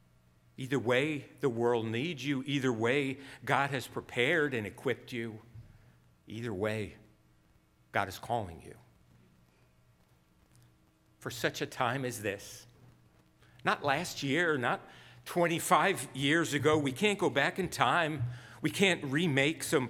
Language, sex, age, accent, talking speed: English, male, 50-69, American, 130 wpm